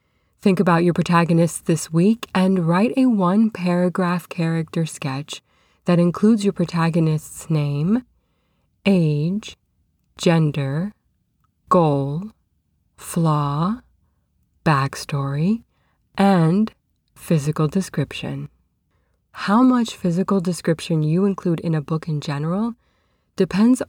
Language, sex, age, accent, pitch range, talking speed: English, female, 20-39, American, 150-185 Hz, 95 wpm